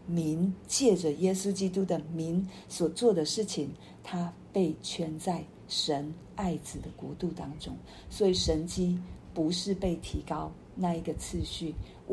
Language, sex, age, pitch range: Chinese, female, 50-69, 160-185 Hz